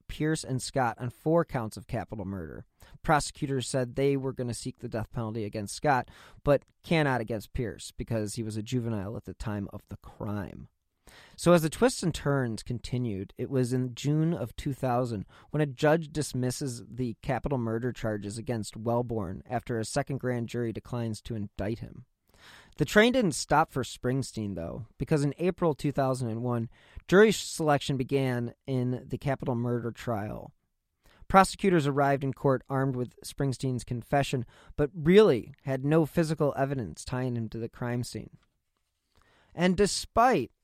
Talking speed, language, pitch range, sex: 160 wpm, English, 115-145 Hz, male